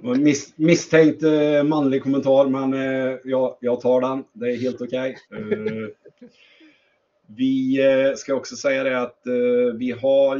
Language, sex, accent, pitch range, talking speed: Swedish, male, native, 105-160 Hz, 155 wpm